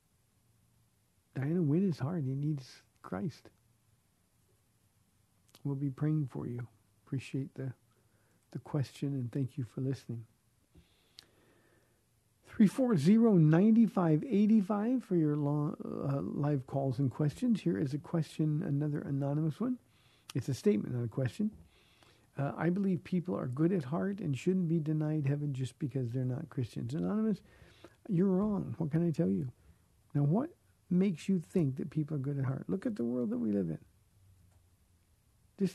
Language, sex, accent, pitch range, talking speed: English, male, American, 115-170 Hz, 150 wpm